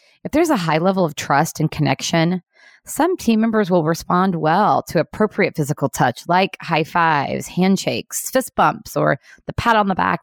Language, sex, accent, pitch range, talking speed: English, female, American, 145-190 Hz, 180 wpm